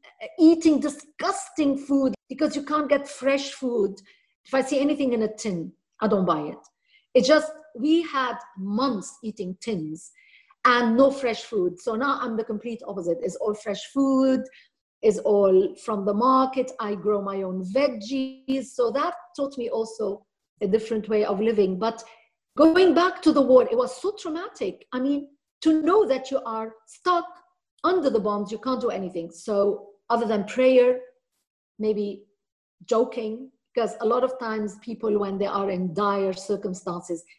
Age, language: 50-69, English